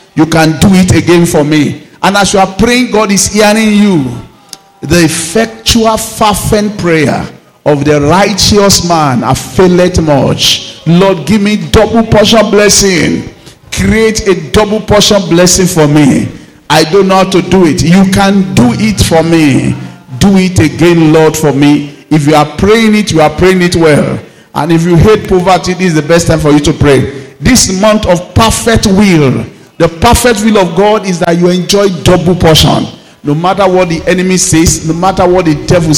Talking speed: 180 wpm